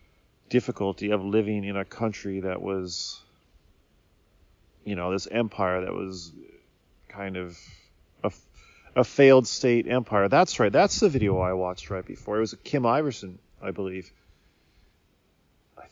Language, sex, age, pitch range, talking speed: English, male, 30-49, 90-110 Hz, 140 wpm